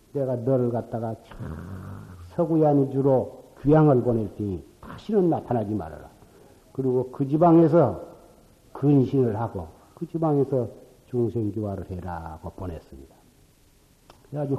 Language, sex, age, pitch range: Korean, male, 60-79, 100-145 Hz